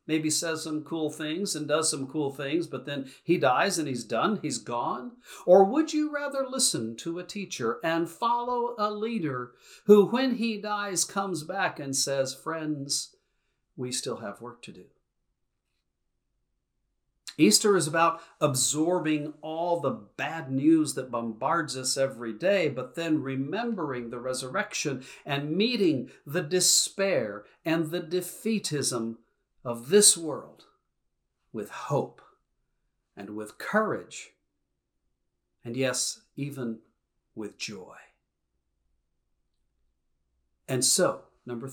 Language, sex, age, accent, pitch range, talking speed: English, male, 50-69, American, 120-170 Hz, 125 wpm